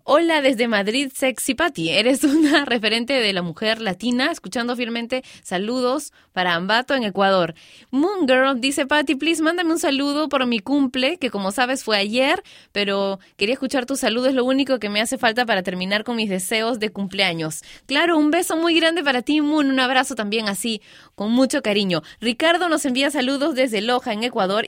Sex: female